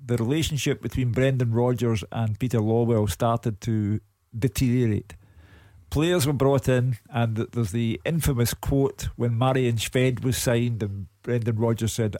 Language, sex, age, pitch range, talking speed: English, male, 50-69, 105-130 Hz, 145 wpm